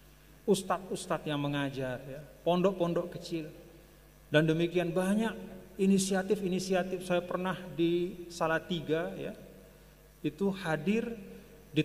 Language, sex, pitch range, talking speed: Indonesian, male, 135-180 Hz, 95 wpm